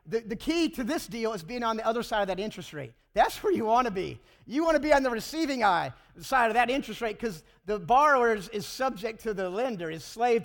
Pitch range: 190-240 Hz